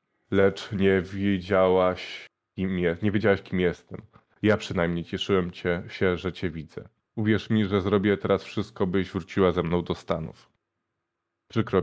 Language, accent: Polish, native